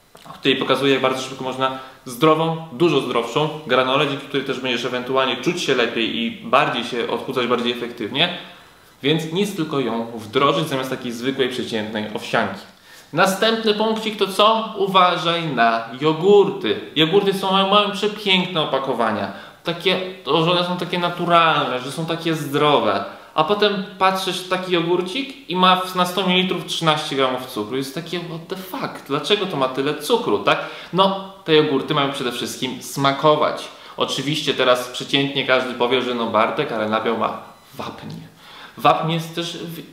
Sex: male